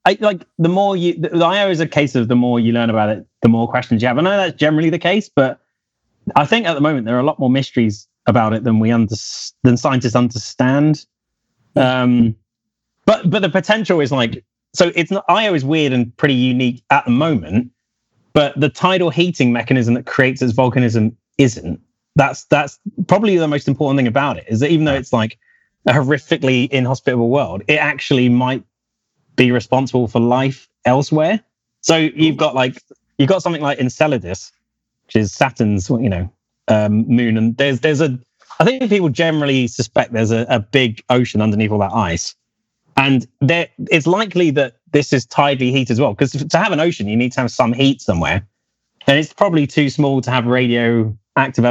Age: 30-49